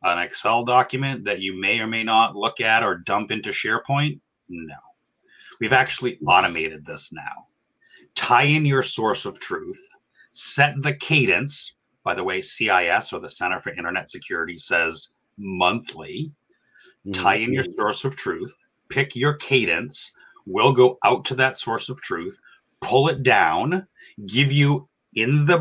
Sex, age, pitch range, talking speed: male, 30-49, 110-140 Hz, 155 wpm